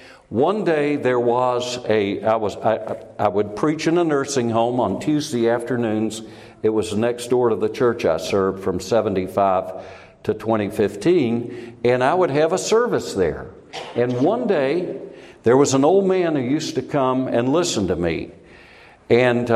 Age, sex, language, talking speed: 60-79, male, English, 170 wpm